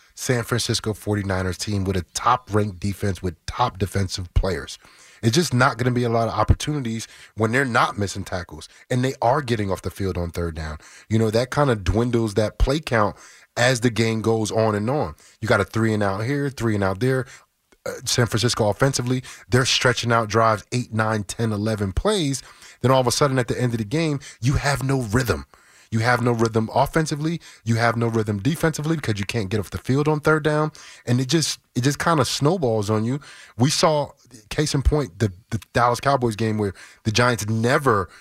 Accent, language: American, English